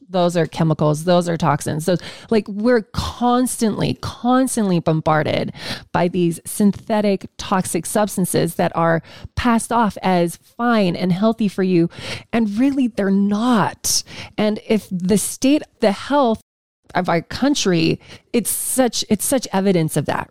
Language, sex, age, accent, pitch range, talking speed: English, female, 20-39, American, 170-215 Hz, 140 wpm